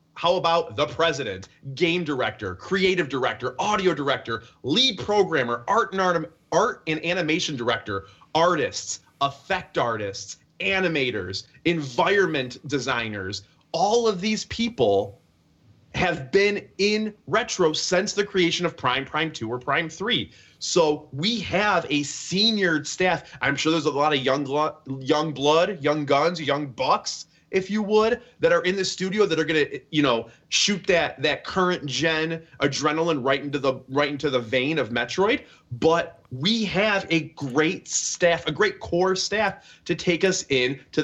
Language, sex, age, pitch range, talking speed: English, male, 30-49, 135-190 Hz, 155 wpm